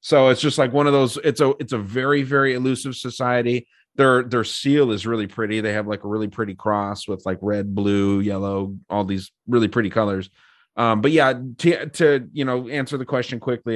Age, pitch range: 30-49, 105-130 Hz